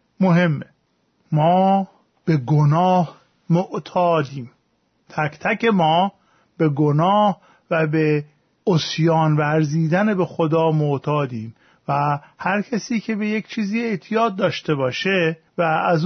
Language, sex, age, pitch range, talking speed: Persian, male, 40-59, 160-200 Hz, 110 wpm